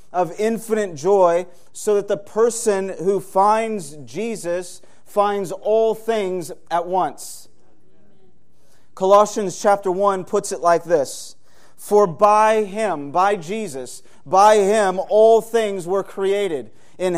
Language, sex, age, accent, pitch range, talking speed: English, male, 30-49, American, 180-220 Hz, 120 wpm